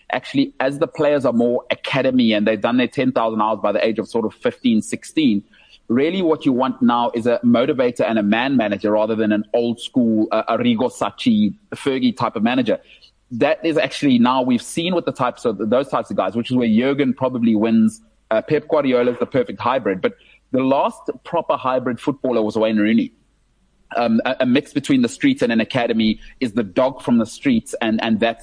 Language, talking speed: English, 205 wpm